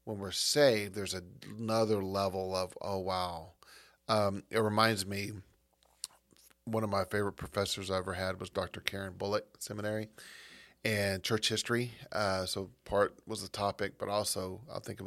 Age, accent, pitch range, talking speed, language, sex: 30-49, American, 95-110 Hz, 160 wpm, English, male